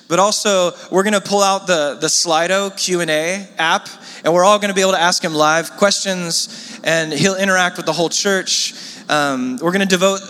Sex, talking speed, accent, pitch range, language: male, 210 wpm, American, 140-195 Hz, English